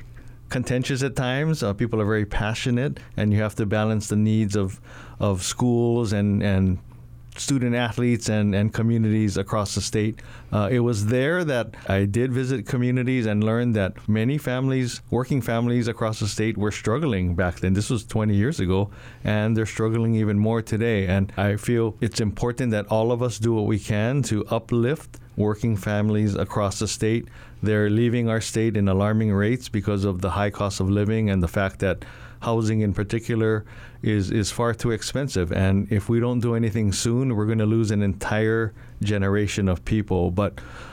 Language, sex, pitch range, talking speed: English, male, 105-120 Hz, 185 wpm